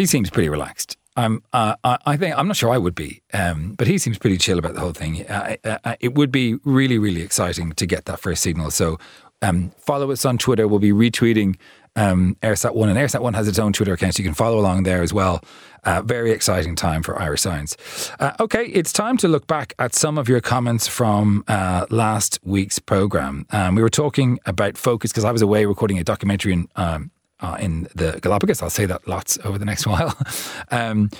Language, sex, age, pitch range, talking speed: English, male, 40-59, 95-125 Hz, 230 wpm